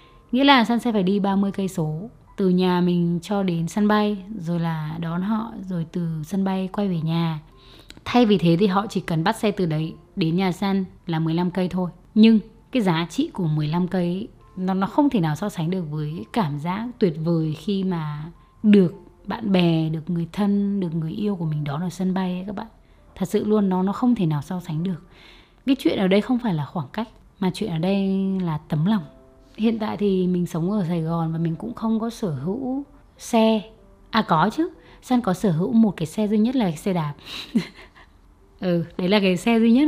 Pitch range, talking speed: 170-215 Hz, 225 wpm